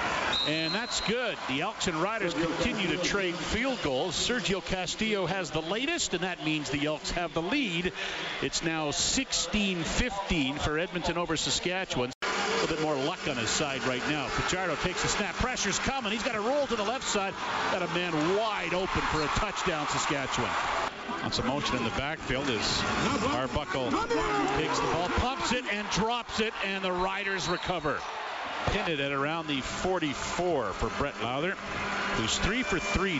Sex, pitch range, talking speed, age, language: male, 160-205 Hz, 180 wpm, 50-69, English